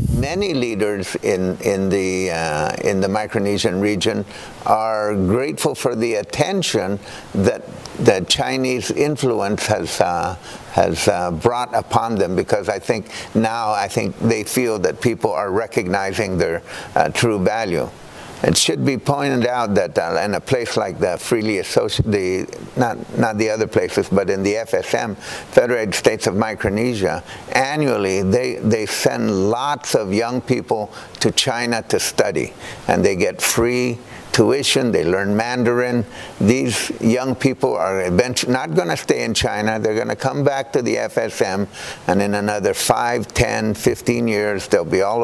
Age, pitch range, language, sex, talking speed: 60-79, 100-125 Hz, English, male, 155 wpm